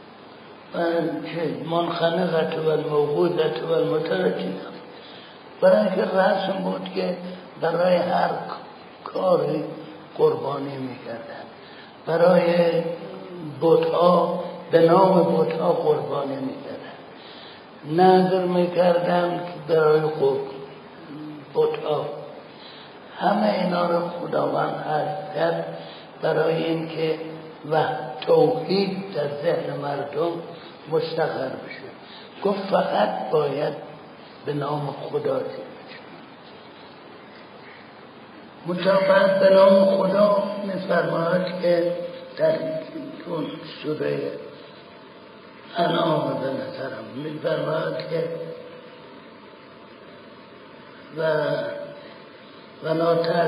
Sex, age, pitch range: male, 60-79, 160-185 Hz